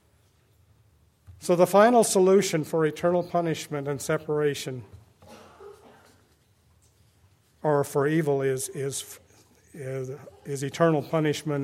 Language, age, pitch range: English, 50-69, 105-150 Hz